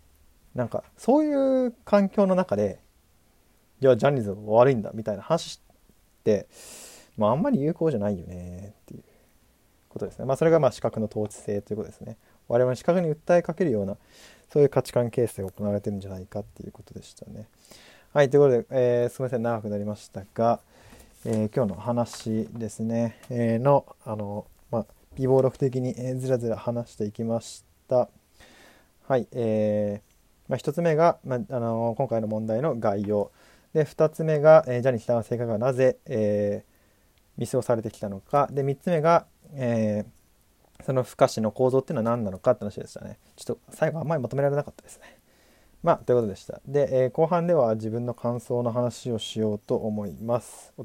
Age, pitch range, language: 20-39, 105-135 Hz, Japanese